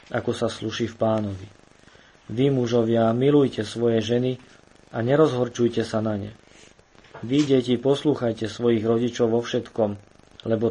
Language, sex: Slovak, male